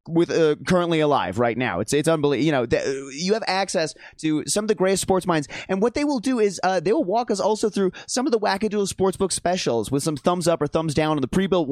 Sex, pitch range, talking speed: male, 140-190 Hz, 260 wpm